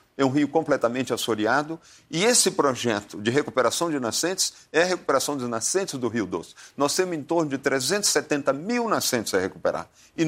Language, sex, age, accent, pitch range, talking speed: Portuguese, male, 50-69, Brazilian, 130-180 Hz, 180 wpm